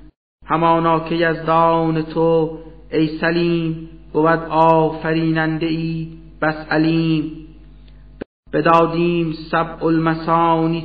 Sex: male